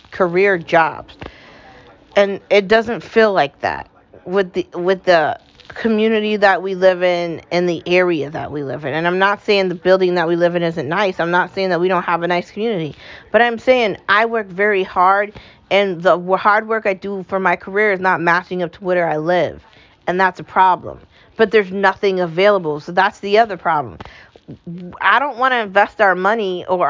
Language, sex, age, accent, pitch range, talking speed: English, female, 40-59, American, 180-230 Hz, 205 wpm